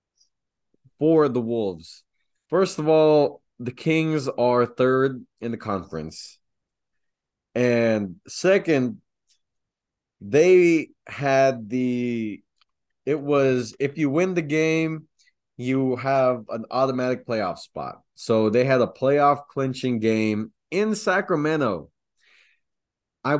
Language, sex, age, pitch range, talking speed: English, male, 20-39, 115-145 Hz, 105 wpm